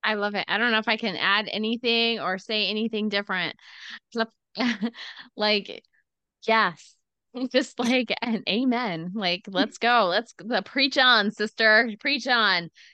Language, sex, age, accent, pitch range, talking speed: English, female, 20-39, American, 185-225 Hz, 145 wpm